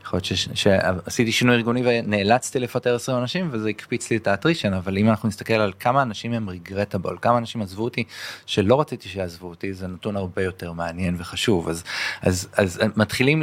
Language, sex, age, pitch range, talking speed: Hebrew, male, 20-39, 90-110 Hz, 180 wpm